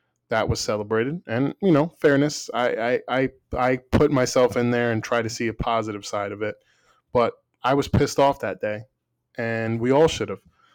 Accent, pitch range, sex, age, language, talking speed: American, 110-135 Hz, male, 20-39, English, 200 wpm